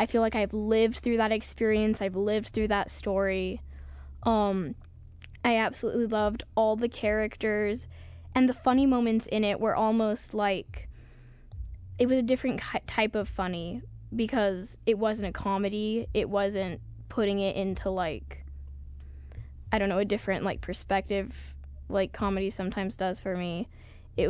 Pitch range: 180-215 Hz